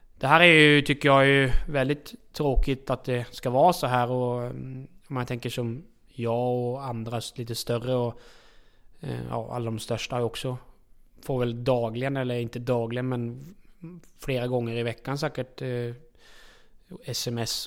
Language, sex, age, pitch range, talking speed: Swedish, male, 20-39, 120-130 Hz, 145 wpm